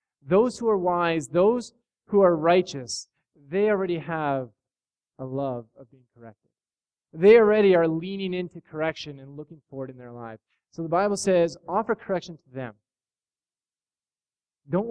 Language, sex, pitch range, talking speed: English, male, 130-170 Hz, 150 wpm